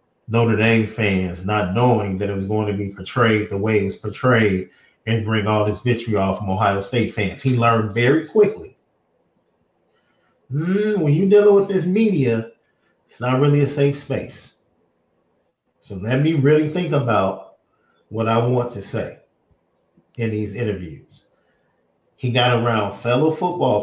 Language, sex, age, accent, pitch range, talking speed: English, male, 40-59, American, 105-135 Hz, 155 wpm